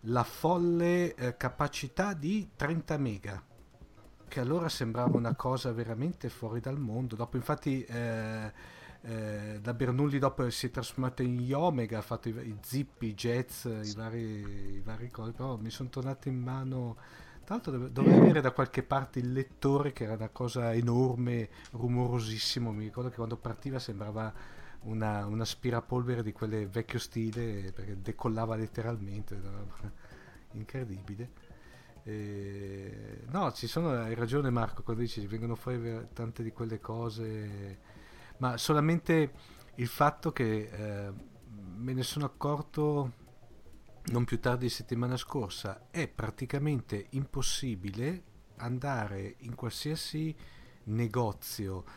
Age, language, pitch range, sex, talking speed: 40-59, Italian, 110-130 Hz, male, 135 wpm